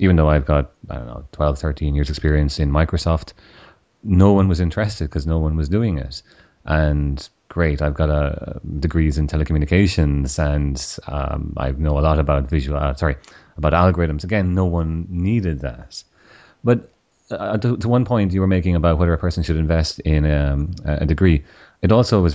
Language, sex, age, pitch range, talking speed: English, male, 30-49, 75-90 Hz, 195 wpm